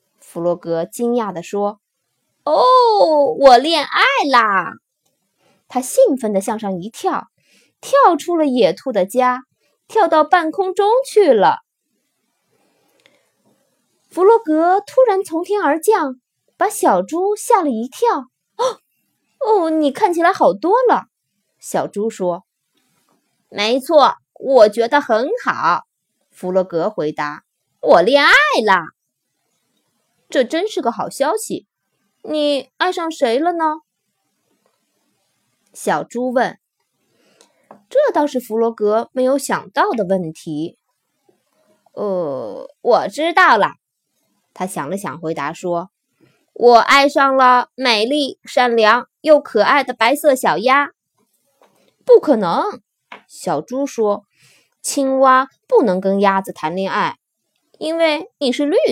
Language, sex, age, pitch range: Chinese, female, 20-39, 215-345 Hz